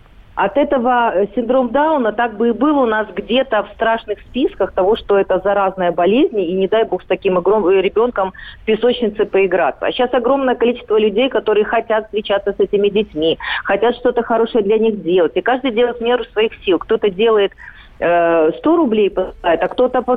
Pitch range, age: 200-260 Hz, 40-59